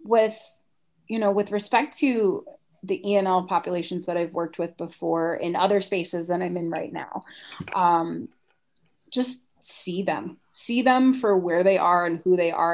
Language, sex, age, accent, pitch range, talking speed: English, female, 30-49, American, 180-215 Hz, 170 wpm